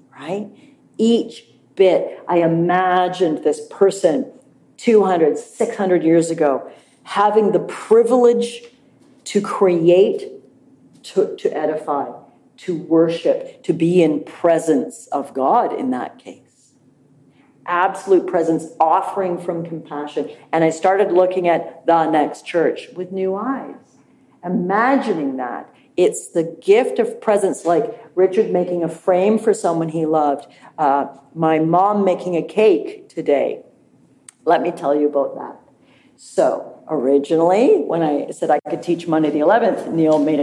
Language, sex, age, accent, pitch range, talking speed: English, female, 50-69, American, 160-230 Hz, 130 wpm